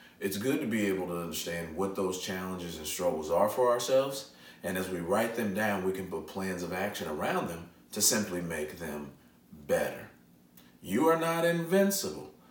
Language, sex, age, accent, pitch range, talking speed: English, male, 40-59, American, 75-115 Hz, 180 wpm